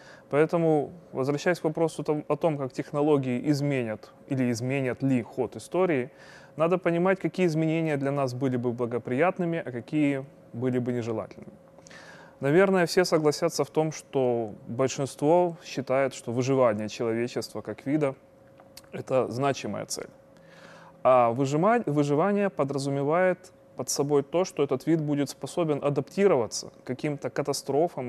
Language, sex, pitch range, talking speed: Russian, male, 125-155 Hz, 125 wpm